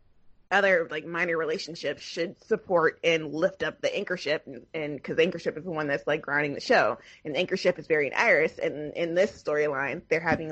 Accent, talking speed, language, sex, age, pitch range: American, 190 wpm, English, female, 20-39, 150-185 Hz